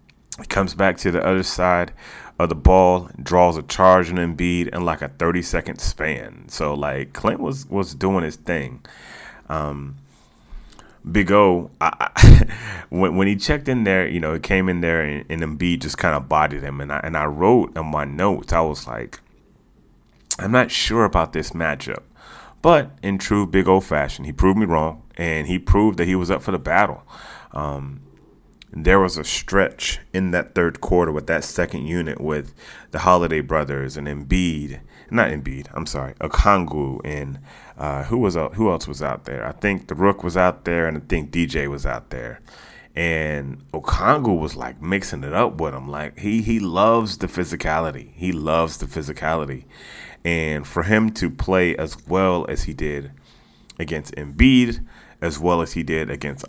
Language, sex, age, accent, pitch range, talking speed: English, male, 30-49, American, 75-95 Hz, 185 wpm